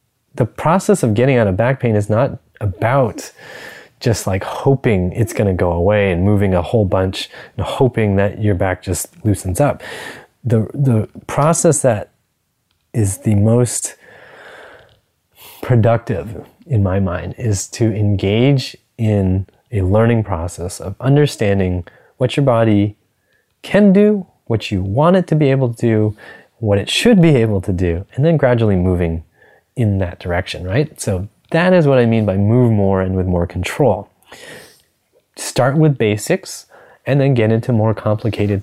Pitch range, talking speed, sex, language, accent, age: 100-135 Hz, 160 wpm, male, English, American, 20-39